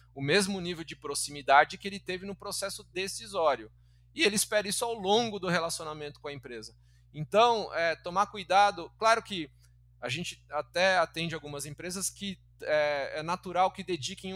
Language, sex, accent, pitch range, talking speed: Portuguese, male, Brazilian, 130-175 Hz, 165 wpm